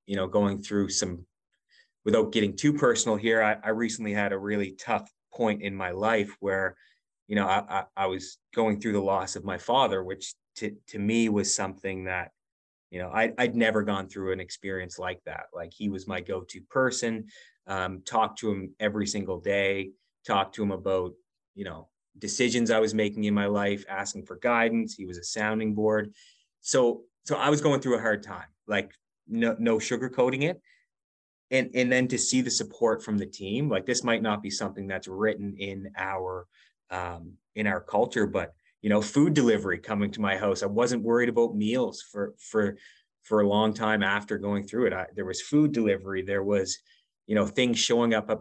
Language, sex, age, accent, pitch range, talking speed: English, male, 30-49, American, 95-110 Hz, 205 wpm